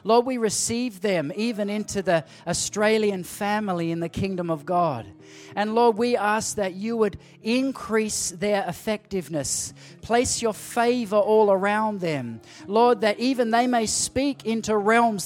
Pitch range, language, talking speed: 190-235 Hz, English, 150 wpm